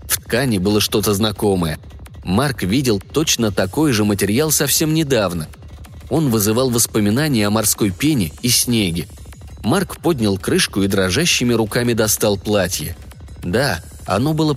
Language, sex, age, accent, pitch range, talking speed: Russian, male, 20-39, native, 90-125 Hz, 130 wpm